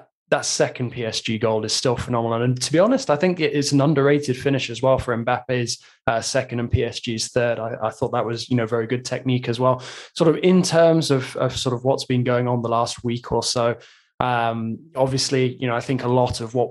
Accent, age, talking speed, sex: British, 20-39, 235 wpm, male